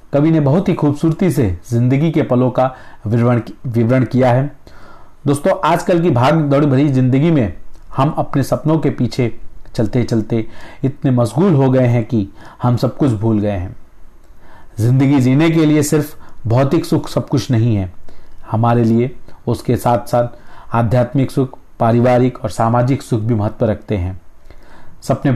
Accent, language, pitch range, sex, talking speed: native, Hindi, 110-135 Hz, male, 160 wpm